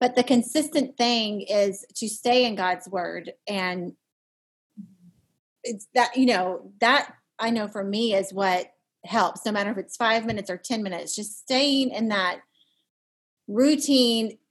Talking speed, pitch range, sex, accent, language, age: 155 wpm, 195-250 Hz, female, American, English, 30-49